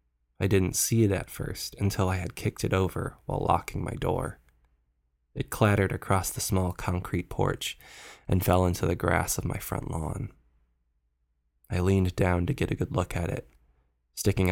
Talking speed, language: 180 wpm, English